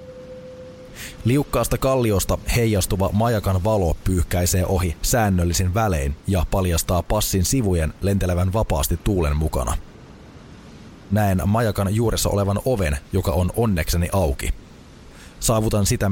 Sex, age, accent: male, 30-49, native